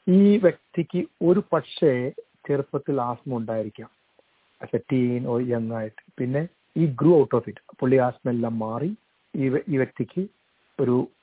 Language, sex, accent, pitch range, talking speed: Malayalam, male, native, 125-165 Hz, 140 wpm